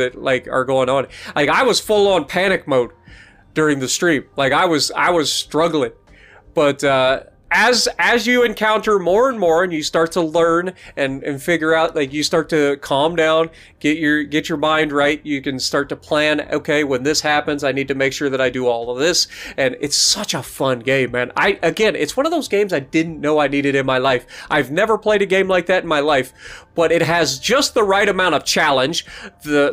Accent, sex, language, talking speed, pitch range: American, male, English, 230 wpm, 140-185 Hz